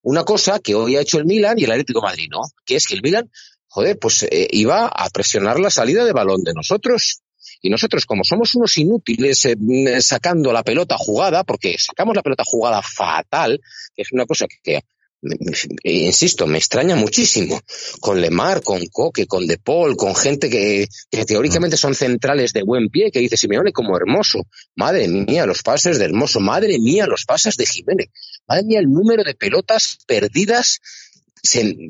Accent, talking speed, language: Spanish, 190 wpm, Spanish